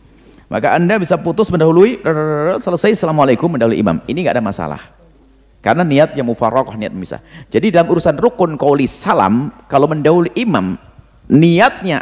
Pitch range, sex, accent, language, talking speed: 120-175 Hz, male, native, Indonesian, 140 wpm